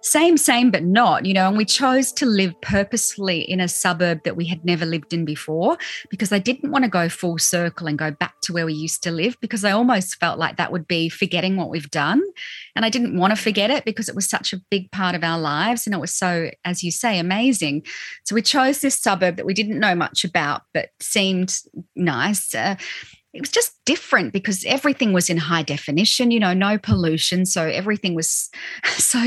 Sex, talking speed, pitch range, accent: female, 225 wpm, 170-230 Hz, Australian